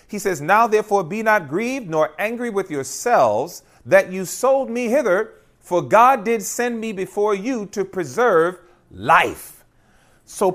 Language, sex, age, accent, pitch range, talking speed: English, male, 40-59, American, 170-230 Hz, 155 wpm